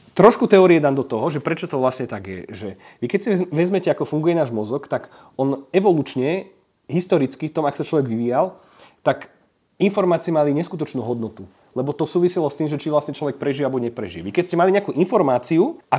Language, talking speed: Slovak, 205 wpm